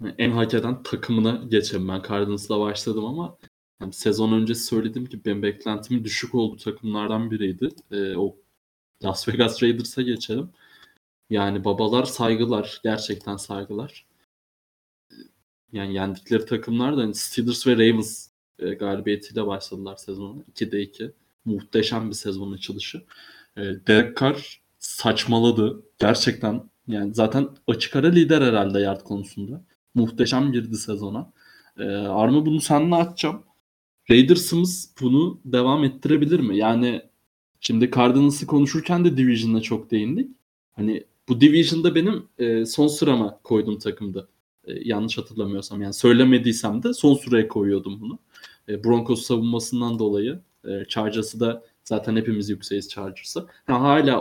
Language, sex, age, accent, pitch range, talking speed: Turkish, male, 20-39, native, 105-125 Hz, 125 wpm